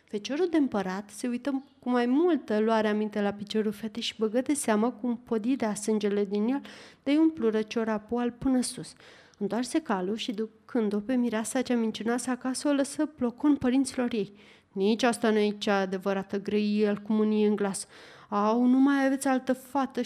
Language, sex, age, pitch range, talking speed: Romanian, female, 30-49, 220-275 Hz, 185 wpm